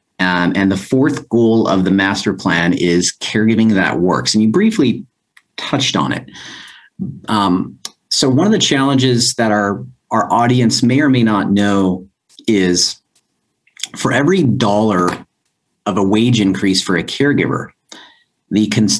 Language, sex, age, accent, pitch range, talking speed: English, male, 40-59, American, 95-125 Hz, 150 wpm